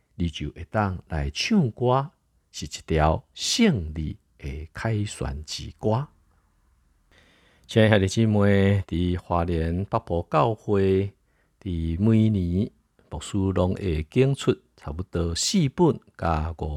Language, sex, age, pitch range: Chinese, male, 50-69, 80-105 Hz